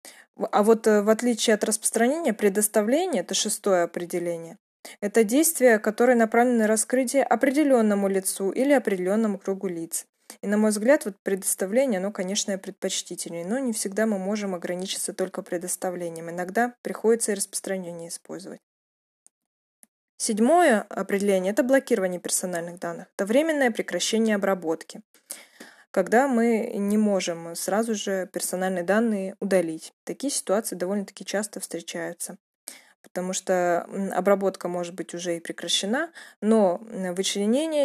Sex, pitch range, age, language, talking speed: female, 180-225 Hz, 20-39, Russian, 120 wpm